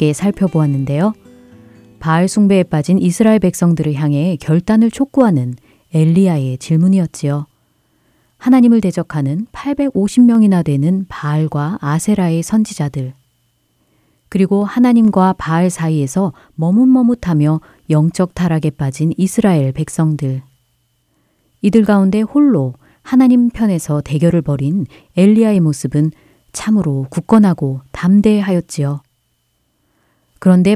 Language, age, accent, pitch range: Korean, 30-49, native, 150-210 Hz